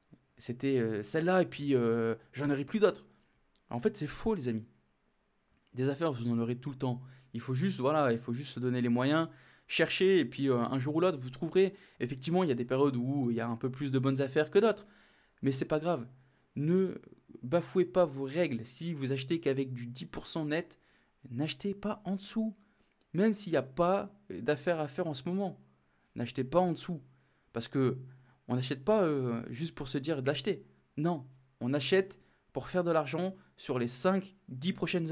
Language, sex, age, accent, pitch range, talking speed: French, male, 20-39, French, 130-175 Hz, 205 wpm